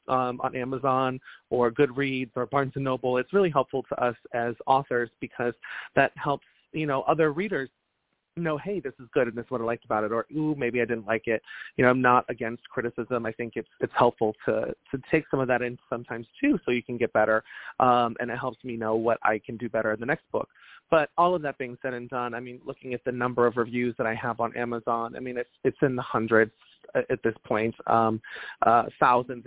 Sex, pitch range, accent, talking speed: male, 120-135 Hz, American, 240 wpm